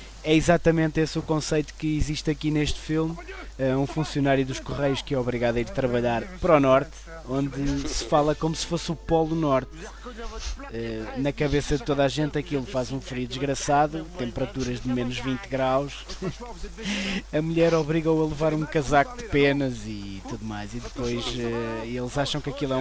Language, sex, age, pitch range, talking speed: English, male, 20-39, 120-160 Hz, 175 wpm